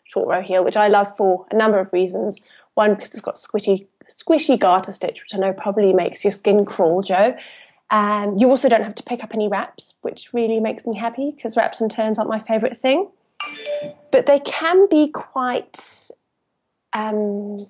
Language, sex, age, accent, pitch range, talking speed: English, female, 20-39, British, 195-255 Hz, 195 wpm